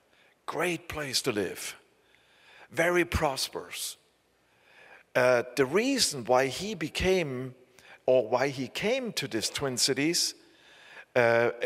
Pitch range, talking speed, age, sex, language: 125-165 Hz, 110 wpm, 50-69, male, English